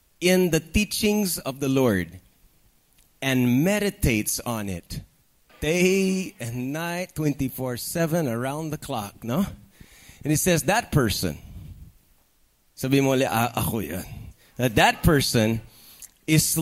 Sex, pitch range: male, 120-175 Hz